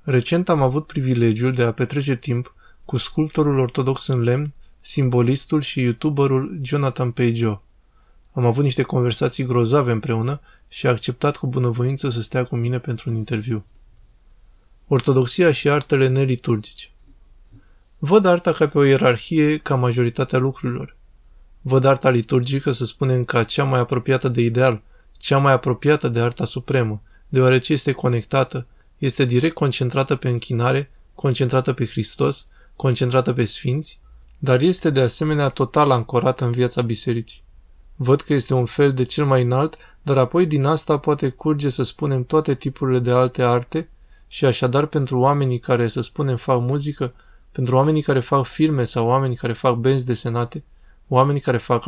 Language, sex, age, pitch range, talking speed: Romanian, male, 20-39, 120-140 Hz, 155 wpm